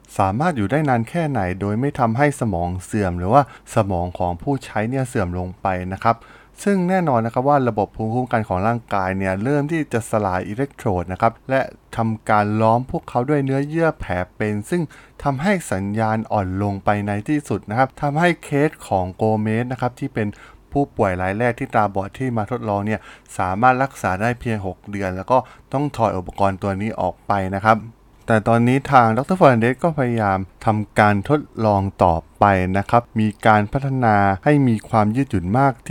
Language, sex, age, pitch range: Thai, male, 20-39, 100-130 Hz